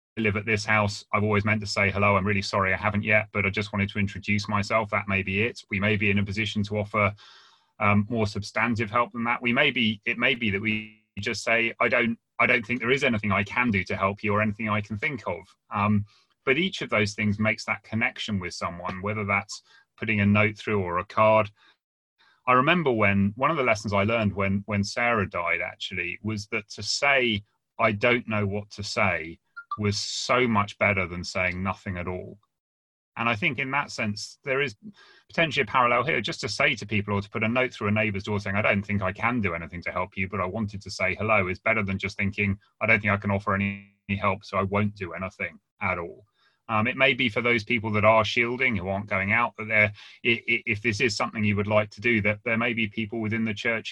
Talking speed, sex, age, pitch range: 245 wpm, male, 30-49, 100-115 Hz